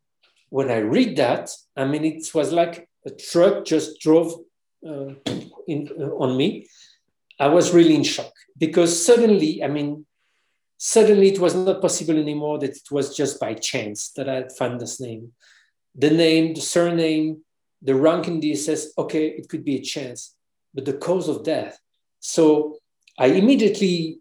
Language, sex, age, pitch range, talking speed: English, male, 50-69, 135-170 Hz, 170 wpm